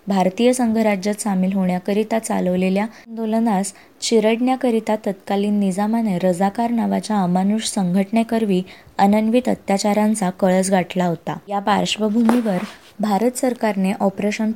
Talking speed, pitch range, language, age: 40 wpm, 190-225 Hz, Marathi, 20-39